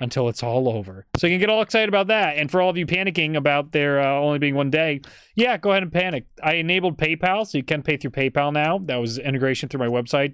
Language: English